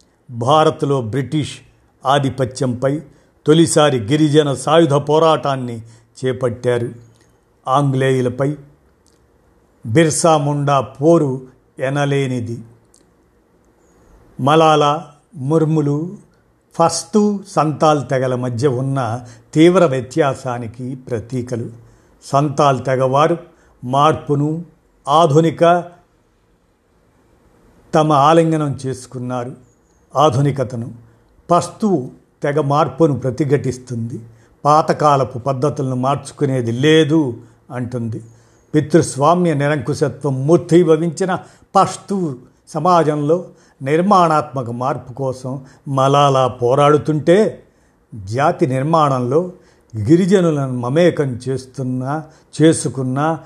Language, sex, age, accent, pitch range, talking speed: Telugu, male, 50-69, native, 125-160 Hz, 60 wpm